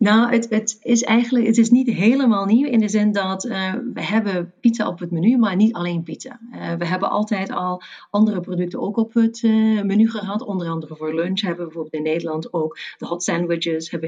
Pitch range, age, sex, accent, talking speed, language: 170-220 Hz, 40-59, female, Dutch, 220 wpm, Dutch